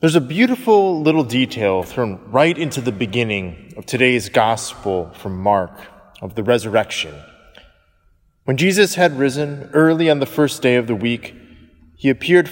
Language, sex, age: English, male, 20-39